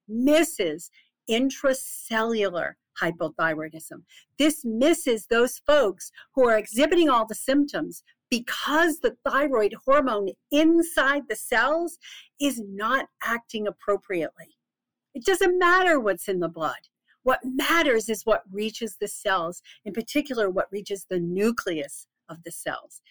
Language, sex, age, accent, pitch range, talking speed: English, female, 50-69, American, 185-275 Hz, 120 wpm